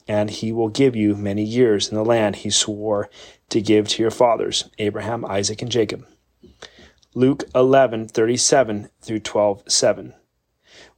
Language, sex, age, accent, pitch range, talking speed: English, male, 30-49, American, 105-125 Hz, 135 wpm